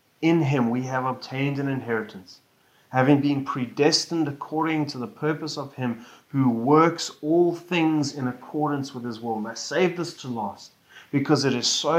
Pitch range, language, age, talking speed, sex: 135-170 Hz, English, 30-49, 165 wpm, male